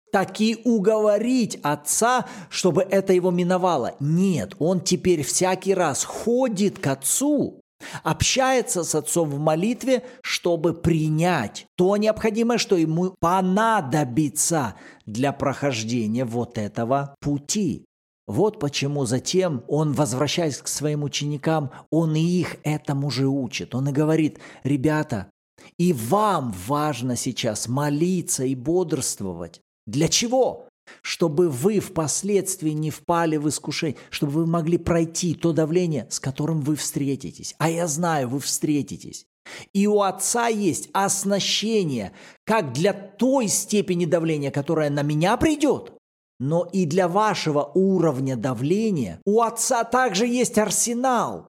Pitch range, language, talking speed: 145-205 Hz, Russian, 125 wpm